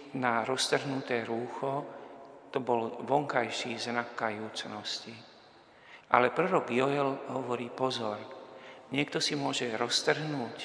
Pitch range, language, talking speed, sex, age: 115-130 Hz, Slovak, 95 wpm, male, 50-69